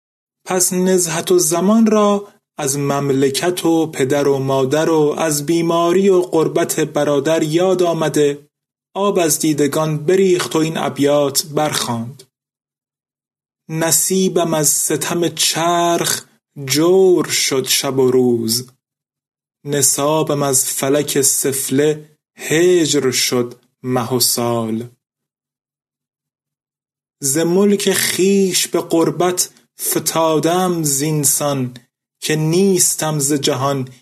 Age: 30-49